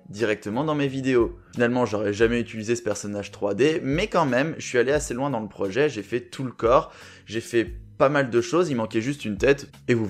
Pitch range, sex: 110-140 Hz, male